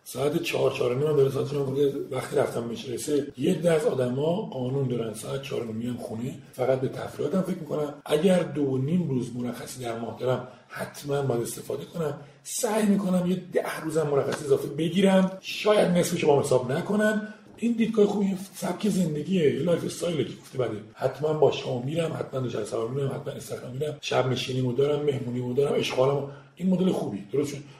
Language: Persian